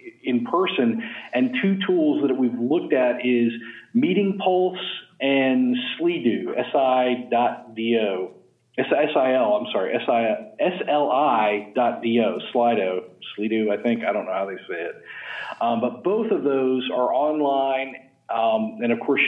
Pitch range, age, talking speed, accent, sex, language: 115-140 Hz, 40-59, 170 wpm, American, male, English